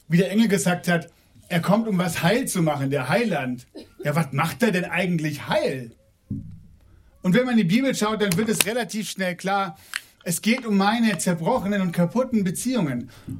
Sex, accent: male, German